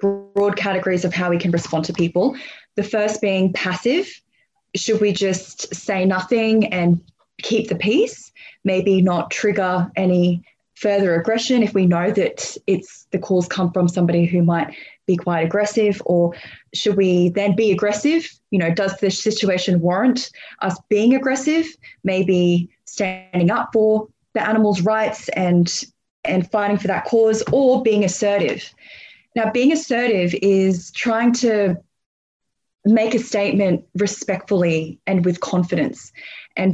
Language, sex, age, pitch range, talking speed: English, female, 20-39, 180-220 Hz, 145 wpm